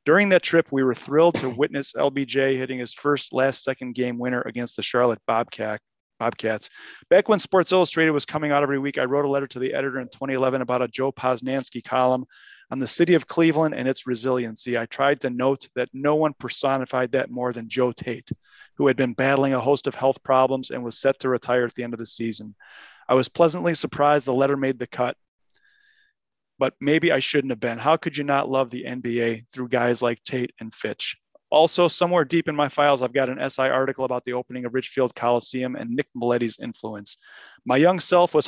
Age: 30-49